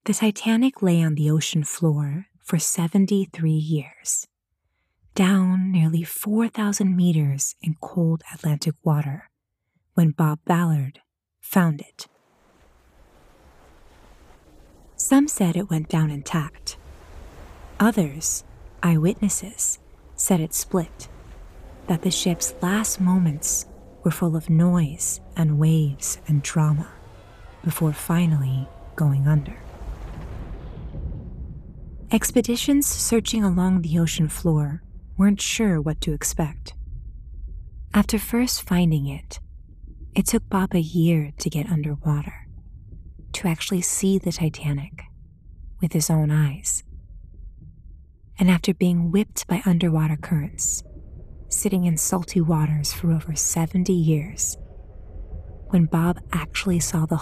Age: 30-49